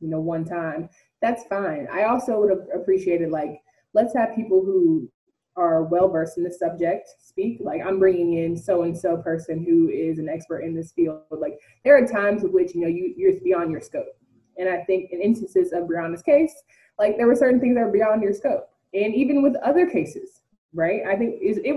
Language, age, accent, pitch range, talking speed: English, 20-39, American, 175-245 Hz, 205 wpm